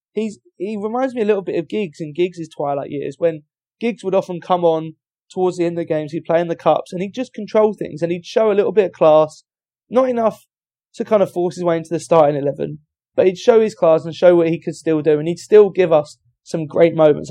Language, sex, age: English, male, 20-39